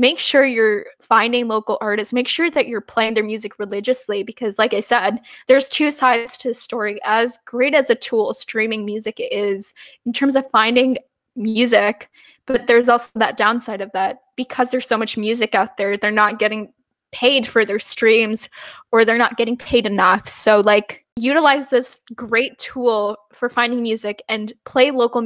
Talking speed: 180 wpm